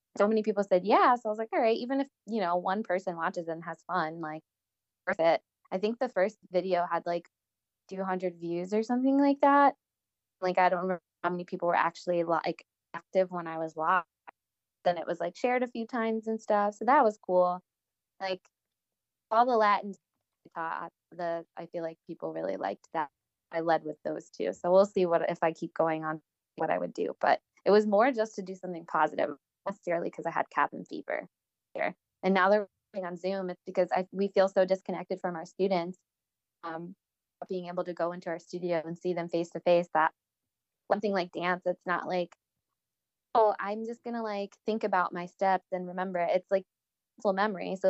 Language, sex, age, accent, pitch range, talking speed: English, female, 20-39, American, 175-215 Hz, 205 wpm